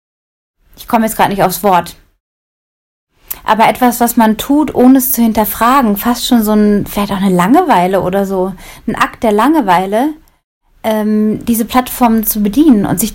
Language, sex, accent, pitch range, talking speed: German, female, German, 210-260 Hz, 170 wpm